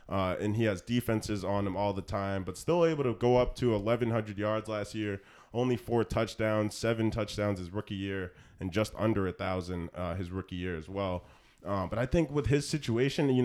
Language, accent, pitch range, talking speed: English, American, 95-120 Hz, 215 wpm